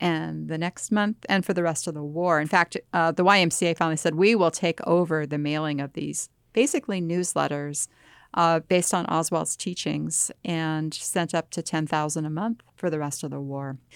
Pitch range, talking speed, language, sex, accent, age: 170-215 Hz, 200 wpm, English, female, American, 40-59